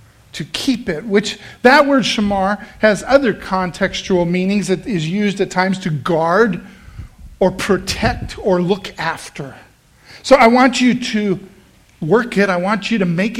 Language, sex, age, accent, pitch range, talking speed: English, male, 50-69, American, 180-215 Hz, 155 wpm